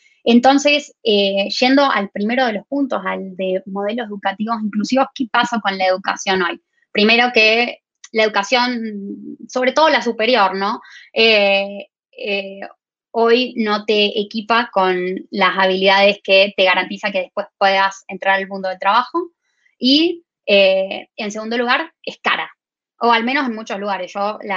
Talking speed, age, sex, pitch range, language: 155 wpm, 20-39, female, 195-240 Hz, Spanish